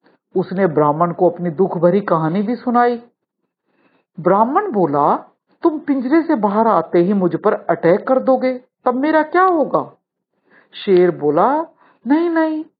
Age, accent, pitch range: 50-69, native, 175-280 Hz